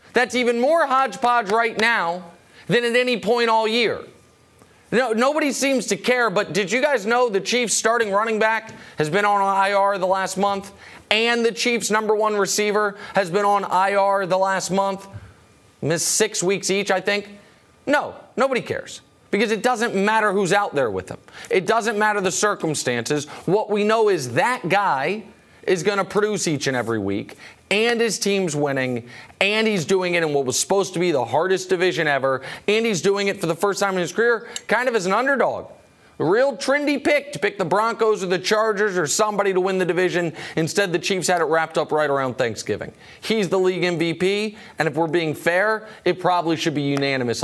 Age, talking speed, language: 30-49, 200 wpm, English